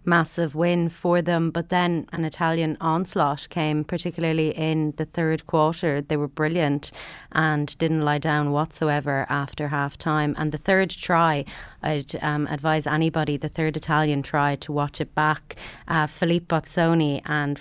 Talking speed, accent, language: 155 wpm, Irish, English